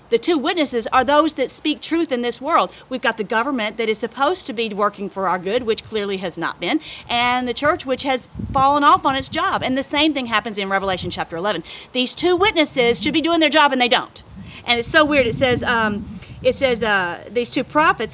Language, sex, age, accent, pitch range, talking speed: English, female, 40-59, American, 230-295 Hz, 240 wpm